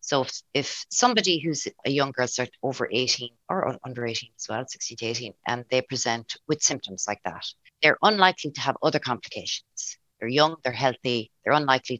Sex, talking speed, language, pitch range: female, 195 wpm, English, 120-140 Hz